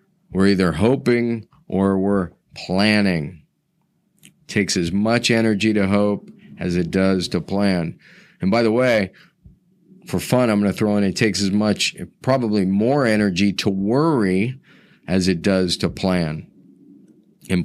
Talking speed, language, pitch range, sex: 145 wpm, English, 95-120 Hz, male